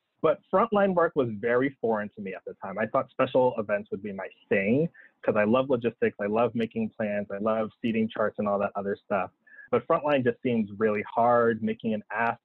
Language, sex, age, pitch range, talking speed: English, male, 20-39, 110-135 Hz, 215 wpm